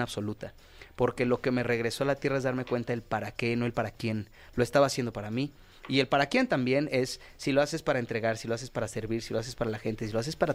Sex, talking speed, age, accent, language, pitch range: male, 285 wpm, 30-49, Mexican, Spanish, 115-140 Hz